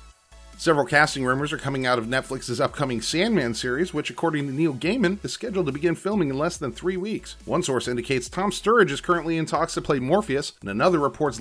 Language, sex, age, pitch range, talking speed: English, male, 30-49, 135-180 Hz, 215 wpm